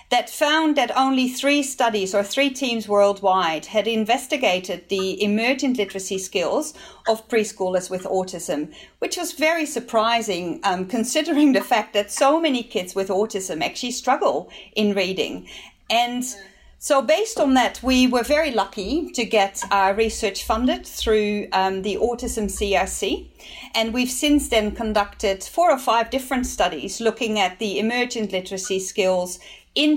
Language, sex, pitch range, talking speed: English, female, 195-250 Hz, 150 wpm